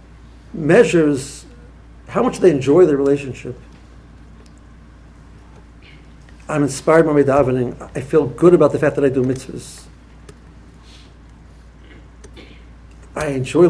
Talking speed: 105 wpm